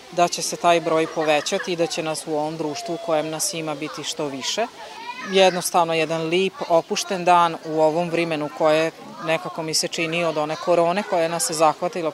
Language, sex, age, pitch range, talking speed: Croatian, female, 30-49, 155-180 Hz, 200 wpm